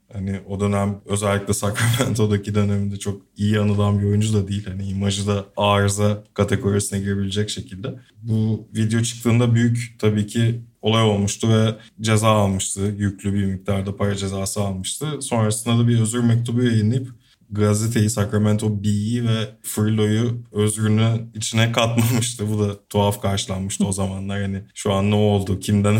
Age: 20-39